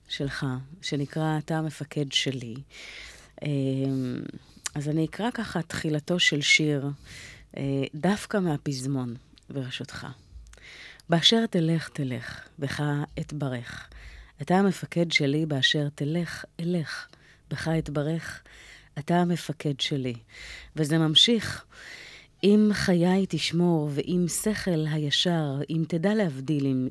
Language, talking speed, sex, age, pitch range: Hebrew, 95 wpm, female, 30-49, 140-170 Hz